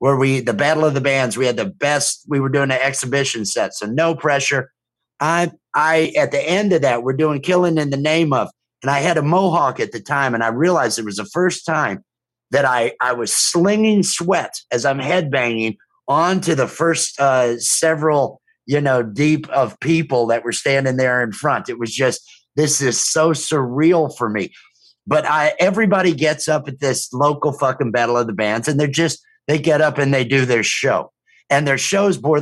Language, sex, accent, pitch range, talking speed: English, male, American, 130-170 Hz, 205 wpm